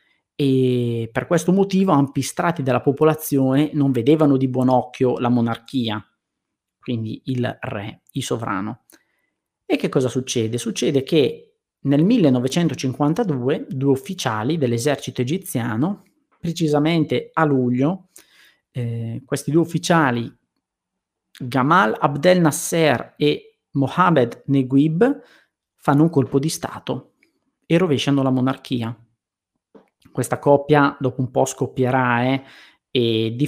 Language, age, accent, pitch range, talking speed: Italian, 30-49, native, 125-155 Hz, 115 wpm